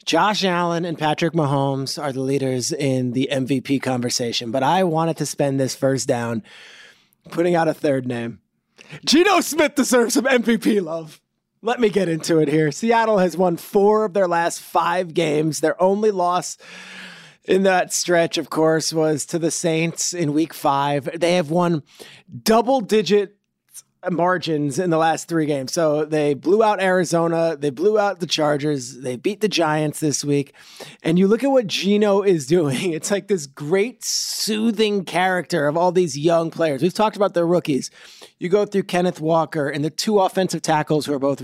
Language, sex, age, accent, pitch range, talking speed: English, male, 30-49, American, 155-205 Hz, 180 wpm